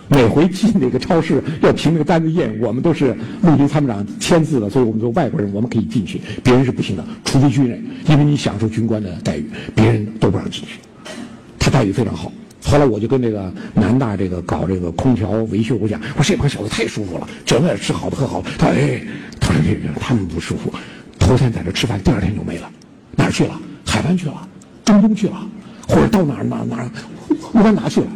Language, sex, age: Chinese, male, 60-79